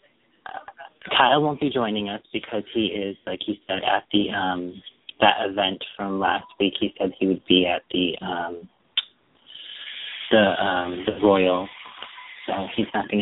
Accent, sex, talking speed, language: American, male, 160 wpm, English